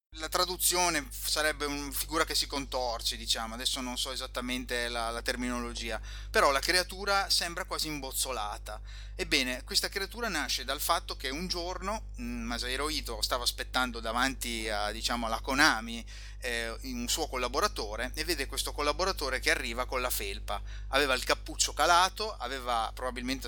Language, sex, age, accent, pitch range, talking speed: Italian, male, 30-49, native, 115-150 Hz, 150 wpm